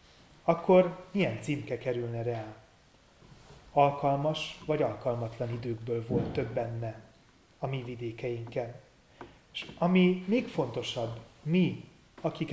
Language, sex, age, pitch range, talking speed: Hungarian, male, 30-49, 120-160 Hz, 100 wpm